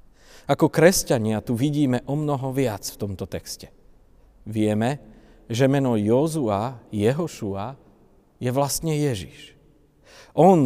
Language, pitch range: Slovak, 105-135 Hz